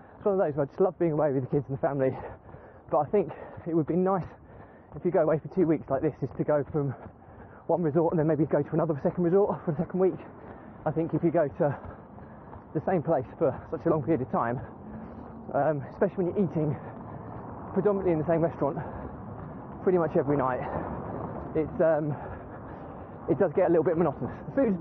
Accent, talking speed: British, 220 wpm